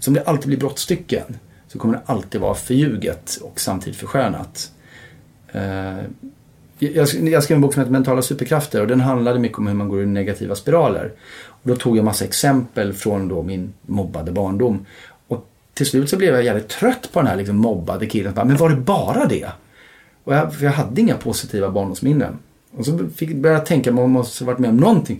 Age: 30-49